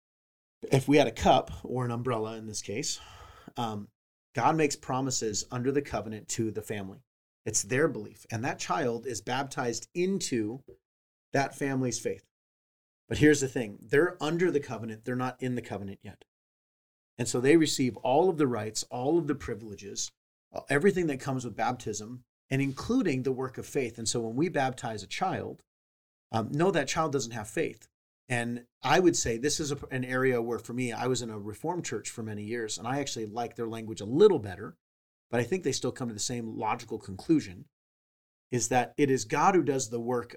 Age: 30-49